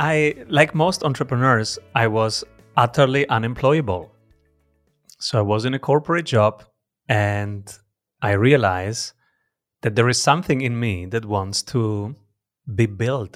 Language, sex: English, male